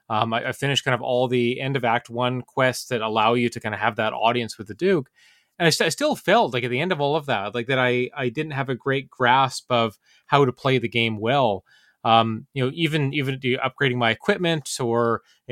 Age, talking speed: 20-39, 250 wpm